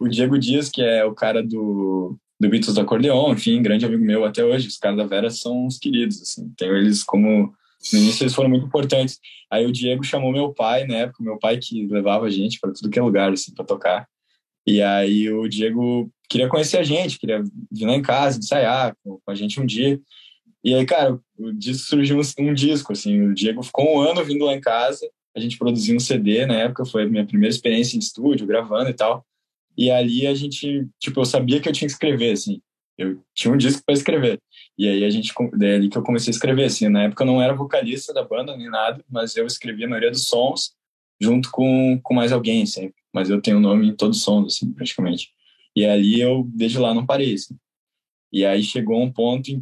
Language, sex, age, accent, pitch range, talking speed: Portuguese, male, 10-29, Brazilian, 105-135 Hz, 235 wpm